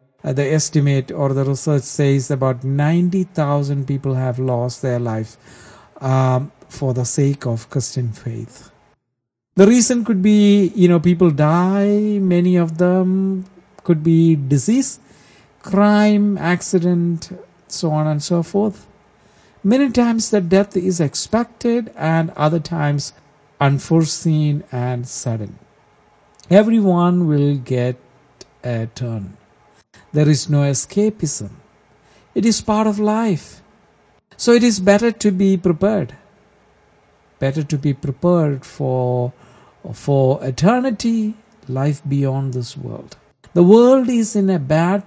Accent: Indian